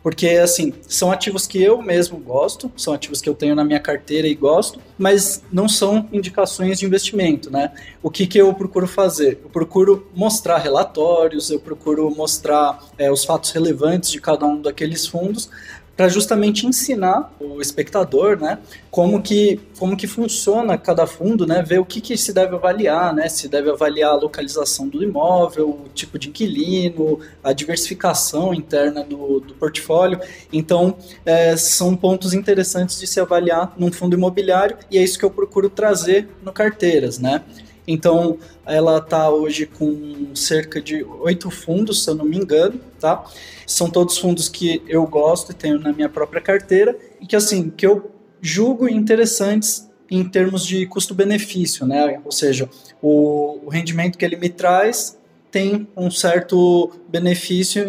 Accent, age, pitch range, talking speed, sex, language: Brazilian, 20-39, 150-195 Hz, 160 wpm, male, Portuguese